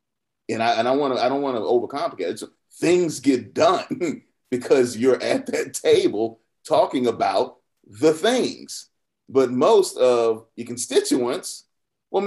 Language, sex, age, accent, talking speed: English, male, 30-49, American, 125 wpm